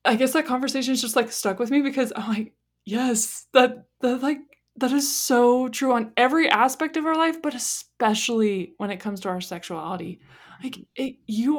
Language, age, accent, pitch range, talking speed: English, 20-39, American, 180-230 Hz, 195 wpm